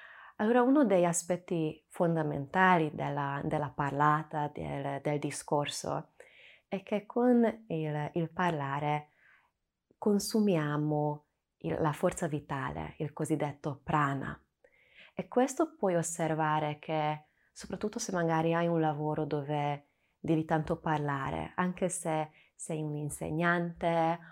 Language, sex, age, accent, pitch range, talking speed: Italian, female, 20-39, native, 150-180 Hz, 110 wpm